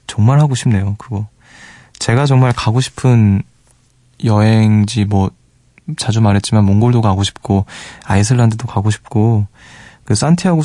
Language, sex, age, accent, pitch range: Korean, male, 20-39, native, 105-135 Hz